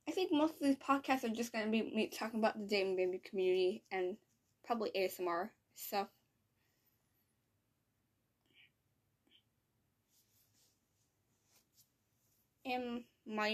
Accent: American